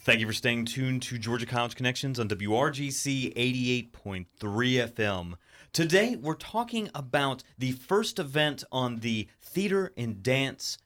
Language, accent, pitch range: English, American, 115-165 Hz